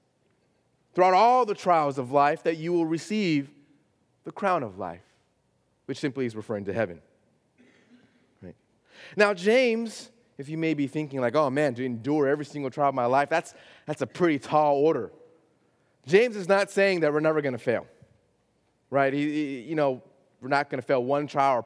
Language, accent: English, American